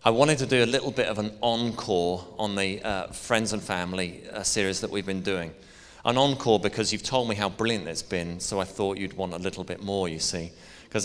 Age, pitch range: 30-49, 95-115 Hz